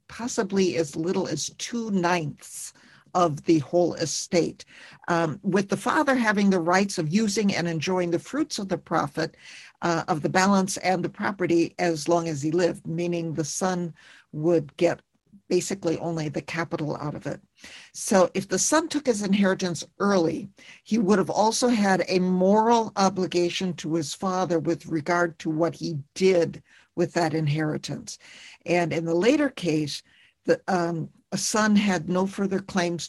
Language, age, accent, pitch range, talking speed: English, 50-69, American, 165-200 Hz, 165 wpm